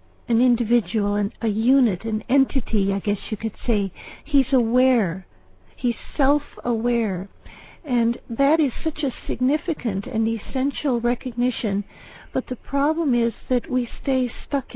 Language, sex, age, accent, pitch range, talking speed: English, female, 60-79, American, 215-255 Hz, 130 wpm